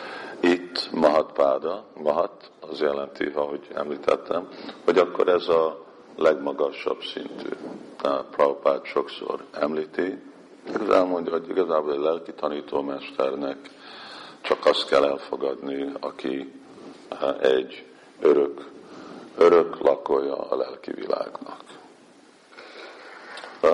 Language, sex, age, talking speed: Hungarian, male, 50-69, 95 wpm